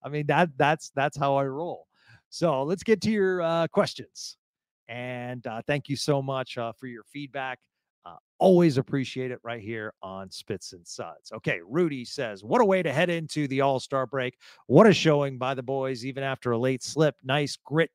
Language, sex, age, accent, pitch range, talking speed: English, male, 40-59, American, 115-145 Hz, 205 wpm